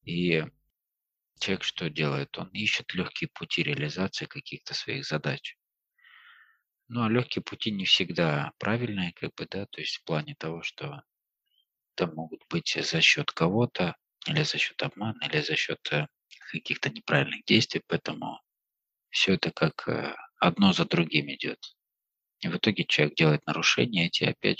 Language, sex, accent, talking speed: Russian, male, native, 145 wpm